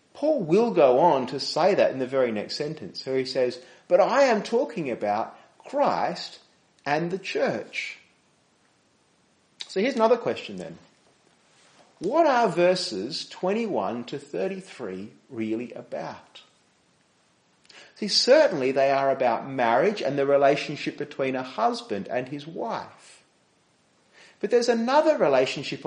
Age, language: 40-59, English